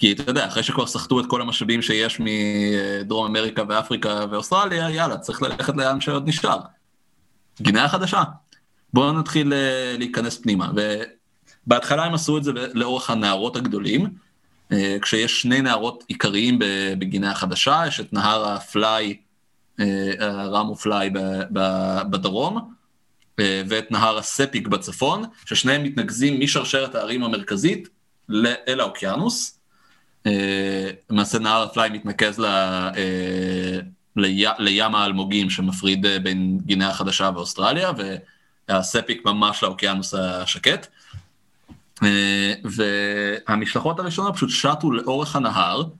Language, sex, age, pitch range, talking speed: Hebrew, male, 20-39, 100-135 Hz, 105 wpm